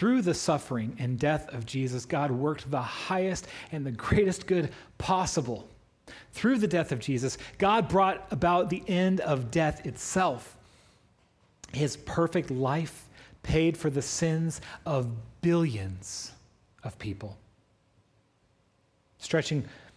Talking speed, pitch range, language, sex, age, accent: 125 wpm, 110-155 Hz, English, male, 40-59, American